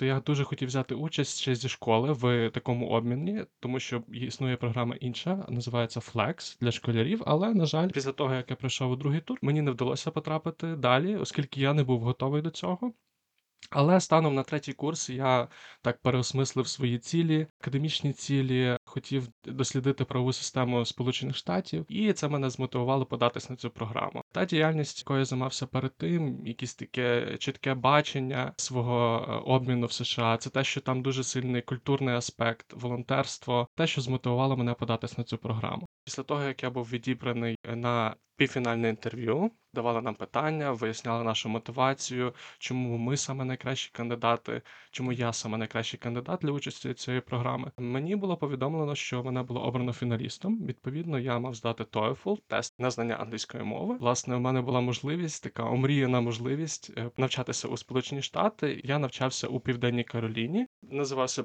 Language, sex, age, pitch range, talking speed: Ukrainian, male, 20-39, 120-140 Hz, 165 wpm